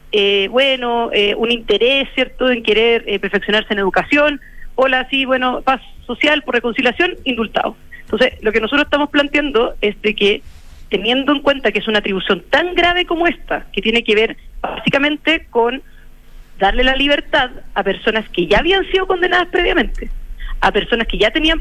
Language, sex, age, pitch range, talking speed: Spanish, female, 40-59, 225-285 Hz, 175 wpm